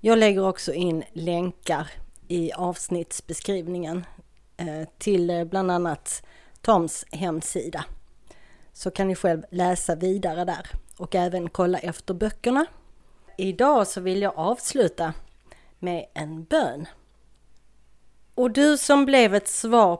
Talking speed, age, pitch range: 115 wpm, 30-49, 175-225 Hz